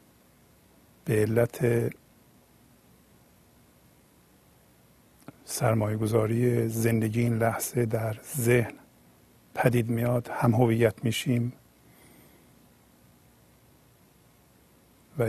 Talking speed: 55 wpm